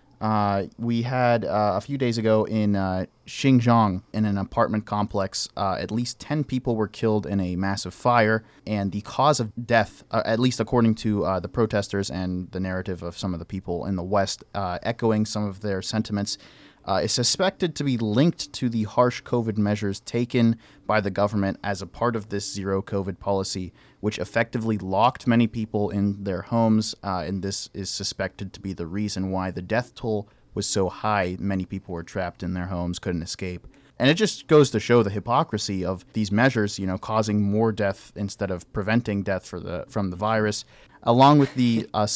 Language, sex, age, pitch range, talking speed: English, male, 30-49, 95-115 Hz, 200 wpm